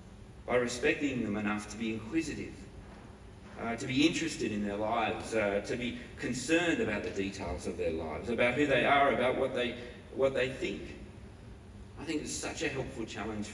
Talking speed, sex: 175 wpm, male